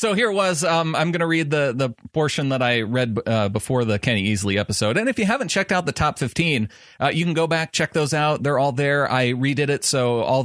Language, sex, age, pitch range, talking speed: English, male, 30-49, 100-135 Hz, 265 wpm